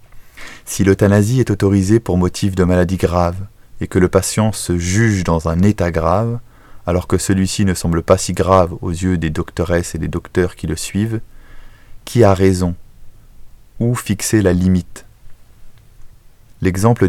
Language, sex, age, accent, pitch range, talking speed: French, male, 20-39, French, 90-110 Hz, 160 wpm